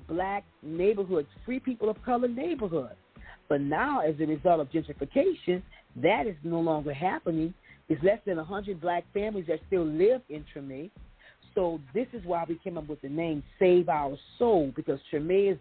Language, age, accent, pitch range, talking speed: English, 40-59, American, 155-220 Hz, 175 wpm